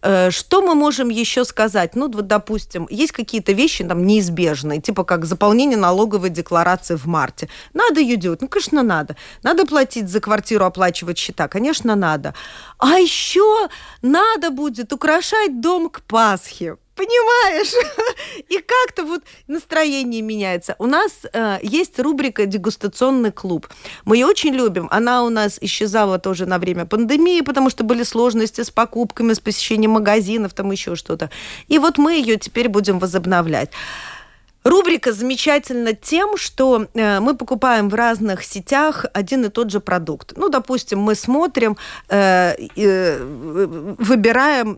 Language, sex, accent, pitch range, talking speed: Russian, female, native, 195-275 Hz, 145 wpm